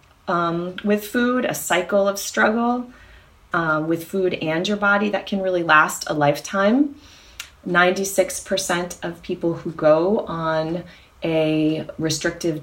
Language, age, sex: English, 30-49, female